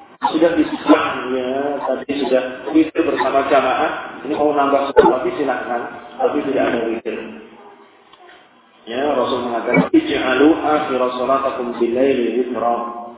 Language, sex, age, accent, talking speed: Indonesian, male, 40-59, native, 120 wpm